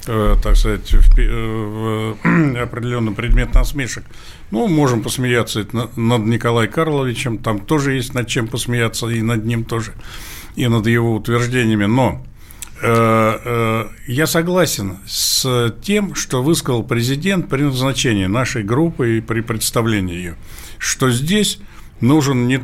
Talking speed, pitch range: 135 wpm, 115-140 Hz